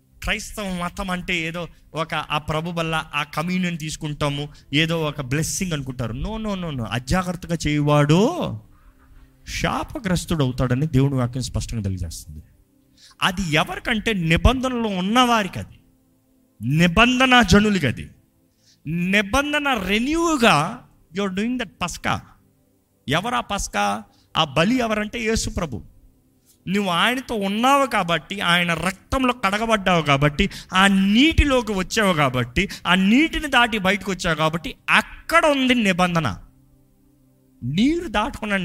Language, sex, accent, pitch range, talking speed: Telugu, male, native, 145-220 Hz, 110 wpm